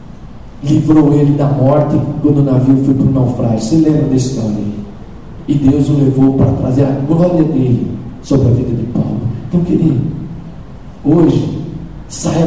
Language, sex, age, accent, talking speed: Portuguese, male, 50-69, Brazilian, 165 wpm